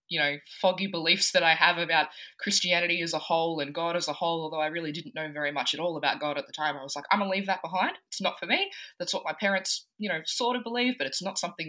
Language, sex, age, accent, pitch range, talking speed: English, female, 20-39, Australian, 155-200 Hz, 295 wpm